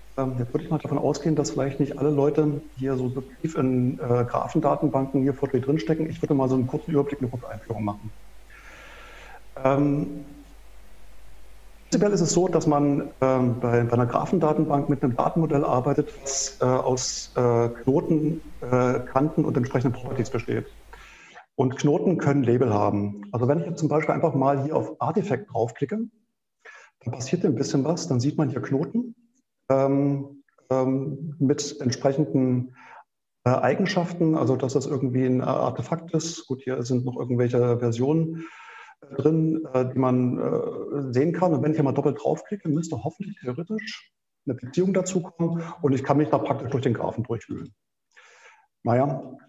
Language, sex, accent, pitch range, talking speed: German, male, German, 125-150 Hz, 160 wpm